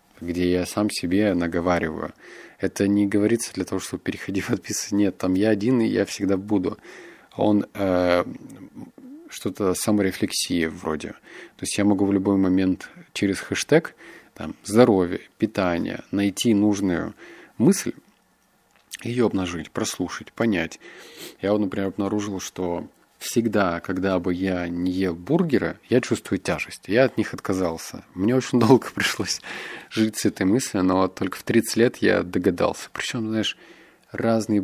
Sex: male